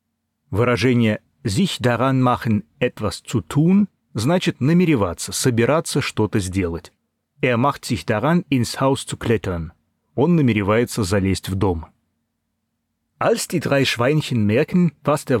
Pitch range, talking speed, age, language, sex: 105-145 Hz, 115 wpm, 30-49, Russian, male